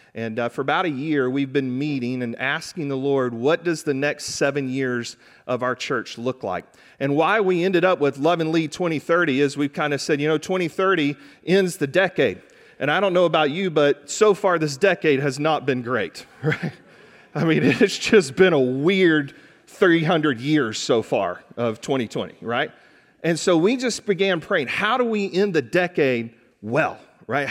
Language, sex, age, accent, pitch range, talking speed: English, male, 40-59, American, 140-185 Hz, 195 wpm